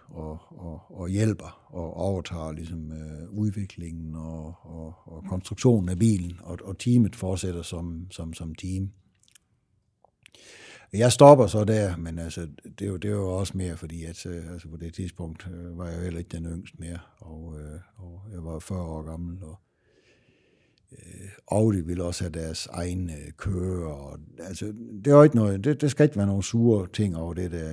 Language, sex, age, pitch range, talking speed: Danish, male, 60-79, 85-105 Hz, 170 wpm